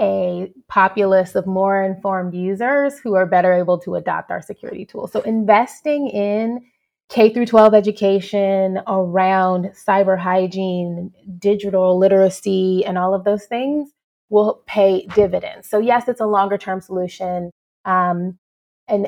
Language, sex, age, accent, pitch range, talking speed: English, female, 20-39, American, 190-220 Hz, 140 wpm